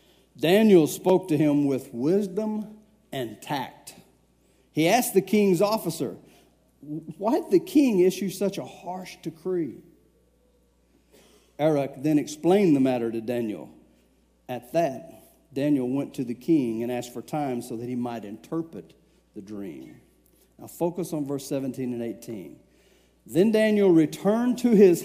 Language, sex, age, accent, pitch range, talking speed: English, male, 50-69, American, 125-180 Hz, 140 wpm